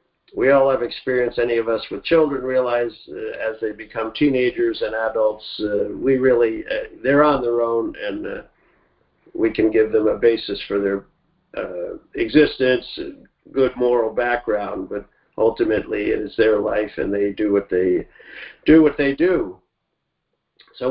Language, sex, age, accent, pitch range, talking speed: English, male, 50-69, American, 120-160 Hz, 155 wpm